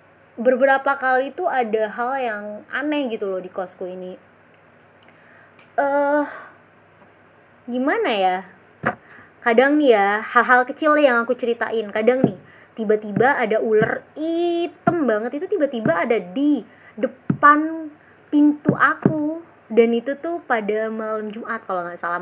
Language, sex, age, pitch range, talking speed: Indonesian, female, 20-39, 210-285 Hz, 125 wpm